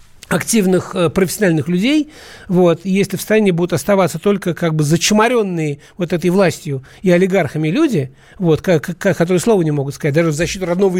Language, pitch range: Russian, 140-185 Hz